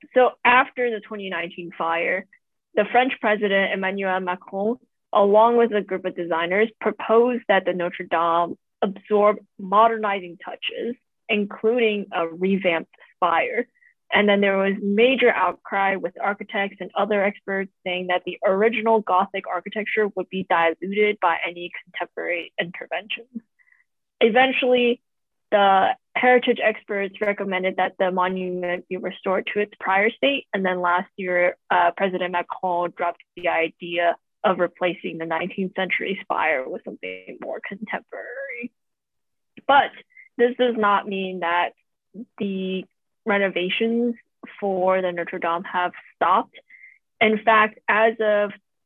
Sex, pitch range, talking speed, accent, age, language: female, 180-220 Hz, 130 wpm, American, 20-39, English